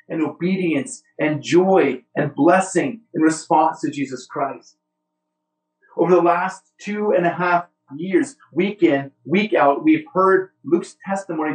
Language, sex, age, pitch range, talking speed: English, male, 40-59, 135-175 Hz, 140 wpm